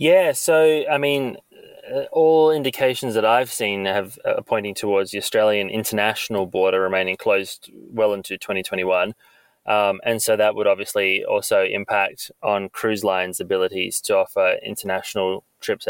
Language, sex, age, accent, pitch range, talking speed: English, male, 20-39, Australian, 95-115 Hz, 145 wpm